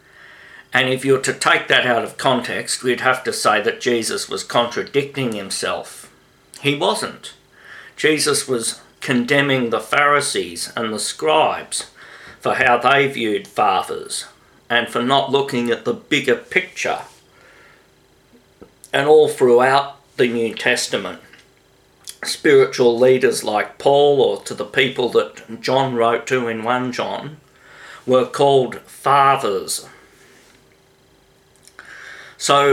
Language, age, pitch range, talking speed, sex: English, 50-69, 120-145 Hz, 125 wpm, male